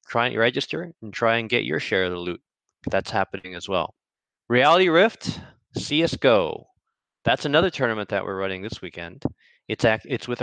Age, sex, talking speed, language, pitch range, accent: 20-39, male, 180 wpm, English, 100-125 Hz, American